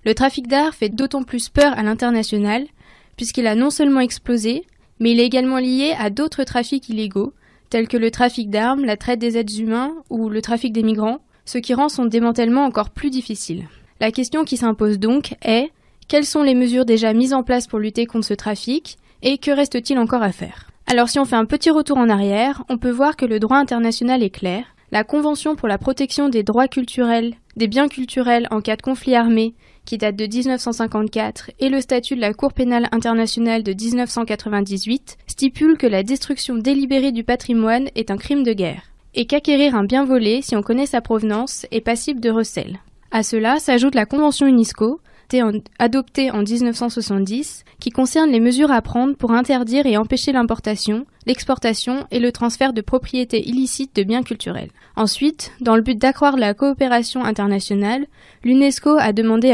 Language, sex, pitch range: French, female, 225-270 Hz